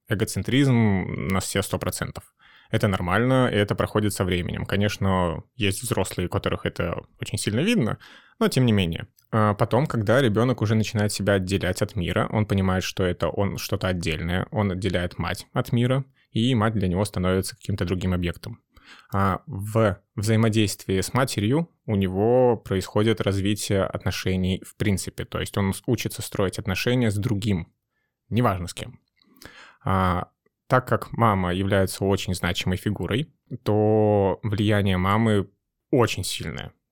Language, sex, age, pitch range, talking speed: Russian, male, 20-39, 95-110 Hz, 145 wpm